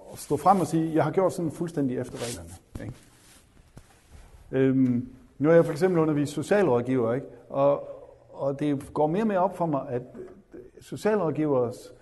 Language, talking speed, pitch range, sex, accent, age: Danish, 175 wpm, 125-165 Hz, male, native, 50-69